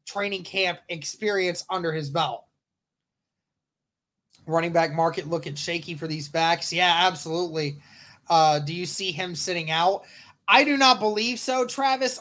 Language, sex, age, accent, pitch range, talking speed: English, male, 20-39, American, 170-195 Hz, 145 wpm